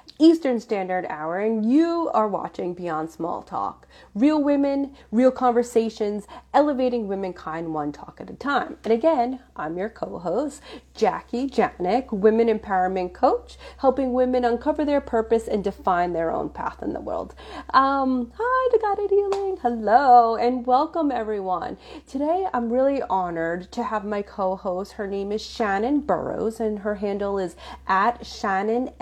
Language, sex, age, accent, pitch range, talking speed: English, female, 30-49, American, 200-270 Hz, 150 wpm